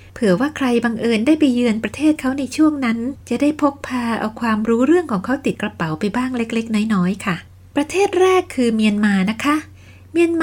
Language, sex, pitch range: Thai, female, 185-260 Hz